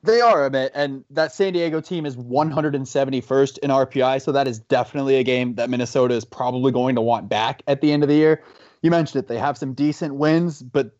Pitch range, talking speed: 135-165 Hz, 230 wpm